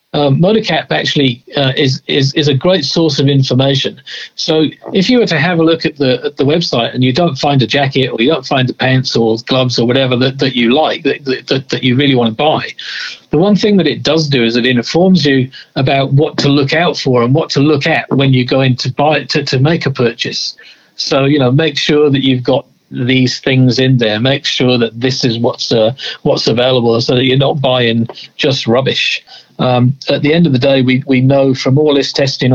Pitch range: 125-145 Hz